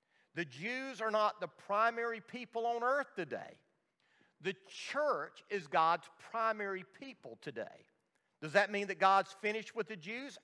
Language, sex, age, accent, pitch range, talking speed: English, male, 50-69, American, 170-215 Hz, 150 wpm